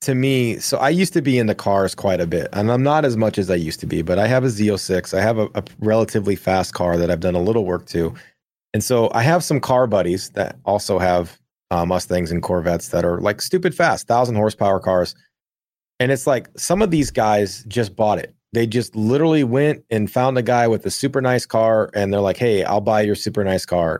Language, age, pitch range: English, 30-49, 95-125 Hz